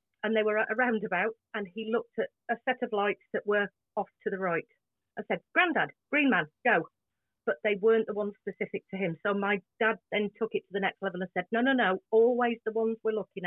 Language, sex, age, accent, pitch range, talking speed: English, female, 40-59, British, 185-235 Hz, 240 wpm